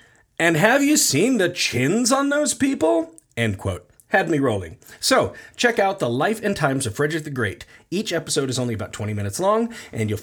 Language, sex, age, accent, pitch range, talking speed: English, male, 30-49, American, 115-160 Hz, 205 wpm